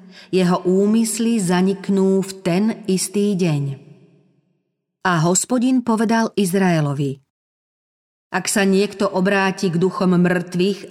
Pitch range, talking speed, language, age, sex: 165-200 Hz, 100 wpm, Slovak, 40-59, female